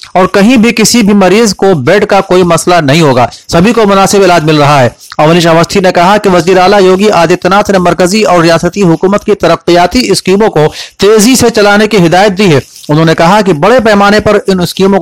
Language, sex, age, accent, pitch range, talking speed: Hindi, male, 40-59, native, 165-205 Hz, 210 wpm